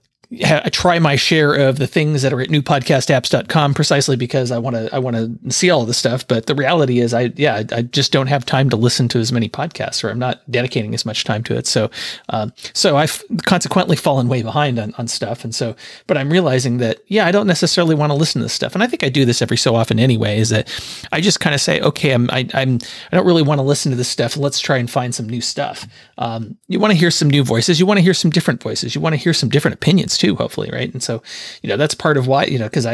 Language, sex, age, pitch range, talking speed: English, male, 40-59, 115-145 Hz, 270 wpm